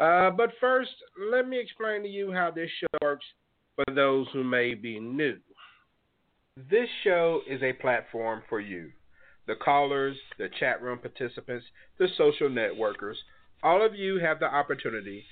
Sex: male